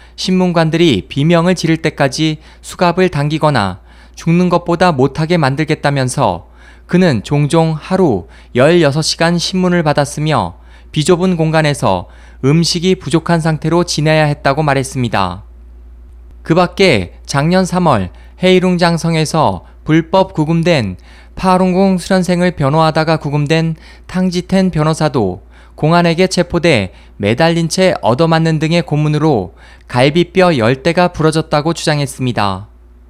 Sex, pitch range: male, 130-175 Hz